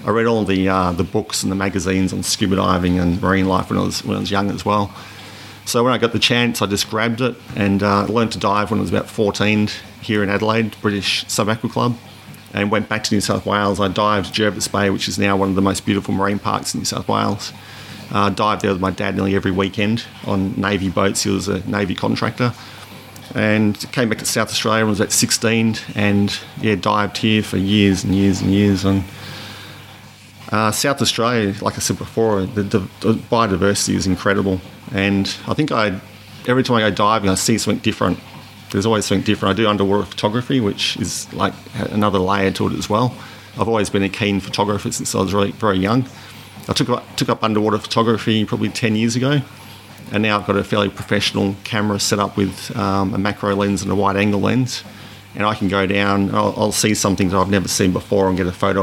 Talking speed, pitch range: 220 wpm, 100-110 Hz